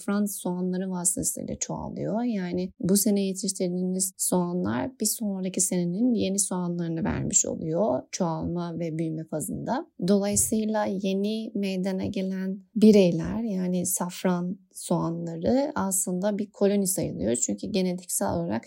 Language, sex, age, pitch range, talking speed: Turkish, female, 30-49, 185-215 Hz, 115 wpm